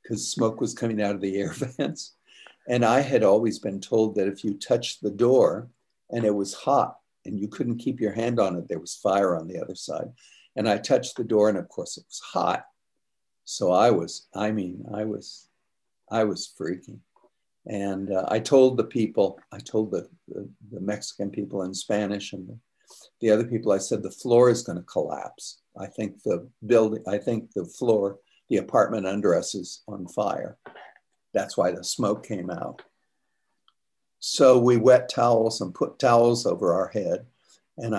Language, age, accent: English, 60-79, American